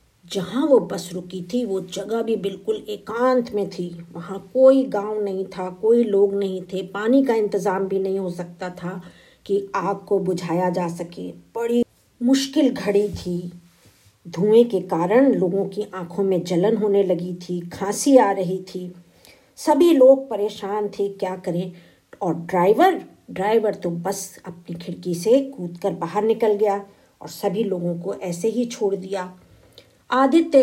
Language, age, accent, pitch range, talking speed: Hindi, 50-69, native, 185-230 Hz, 155 wpm